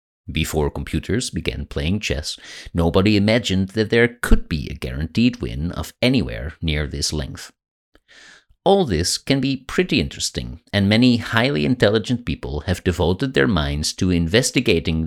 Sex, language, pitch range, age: male, English, 80-125 Hz, 50-69